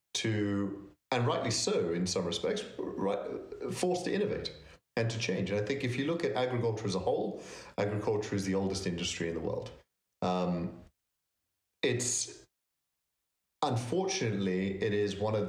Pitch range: 95-115 Hz